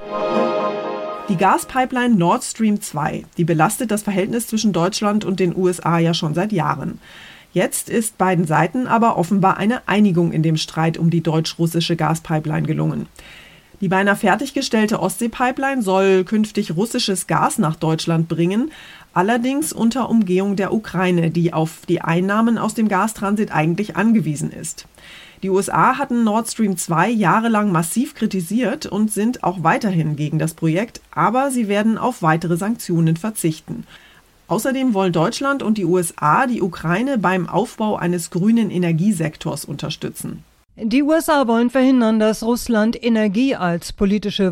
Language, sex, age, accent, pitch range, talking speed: German, female, 30-49, German, 175-225 Hz, 145 wpm